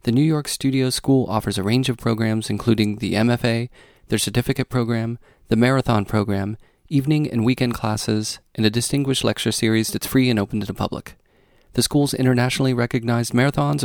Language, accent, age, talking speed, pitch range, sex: English, American, 30-49, 175 wpm, 110-130 Hz, male